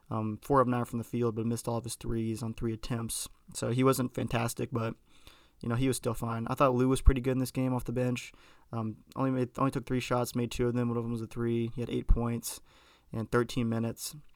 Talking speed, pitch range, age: 265 wpm, 115-125 Hz, 20-39